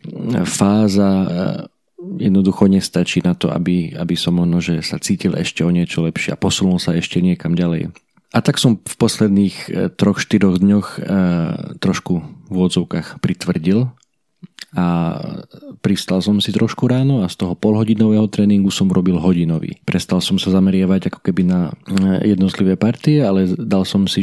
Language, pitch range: Slovak, 90-105 Hz